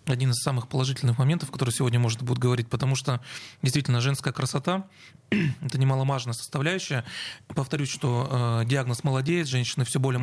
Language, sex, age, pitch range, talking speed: Russian, male, 30-49, 130-150 Hz, 145 wpm